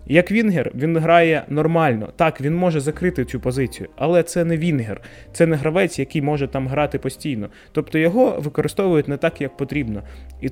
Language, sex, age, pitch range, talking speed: Ukrainian, male, 20-39, 130-165 Hz, 175 wpm